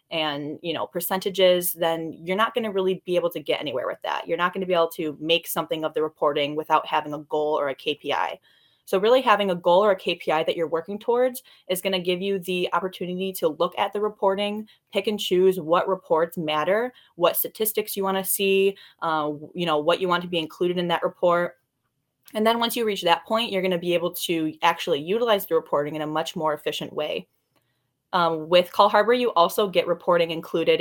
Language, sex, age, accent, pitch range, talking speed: English, female, 10-29, American, 160-190 Hz, 225 wpm